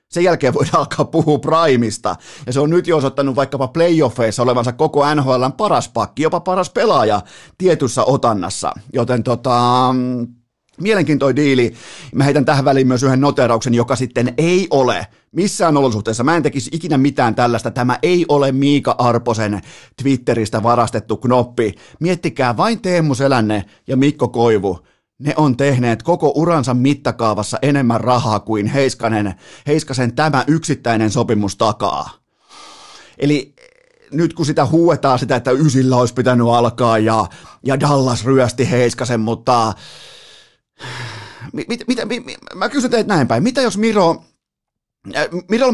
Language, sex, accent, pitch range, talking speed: Finnish, male, native, 120-160 Hz, 140 wpm